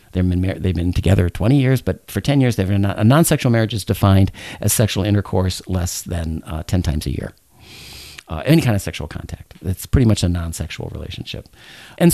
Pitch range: 95-120 Hz